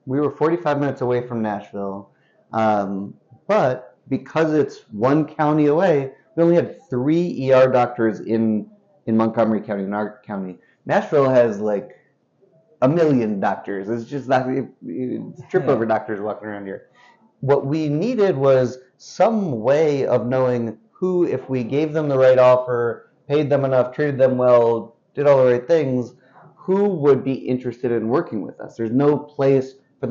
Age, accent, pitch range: 30-49, American, 110-140 Hz